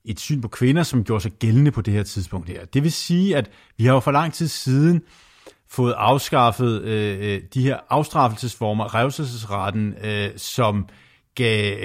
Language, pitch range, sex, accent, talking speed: Danish, 105-130 Hz, male, native, 170 wpm